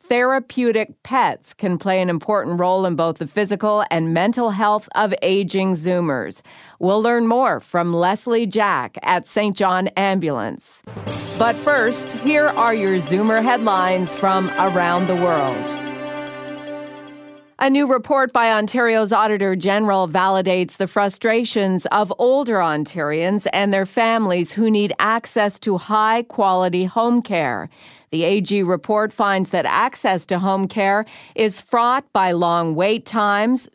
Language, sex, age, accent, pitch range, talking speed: English, female, 40-59, American, 175-225 Hz, 135 wpm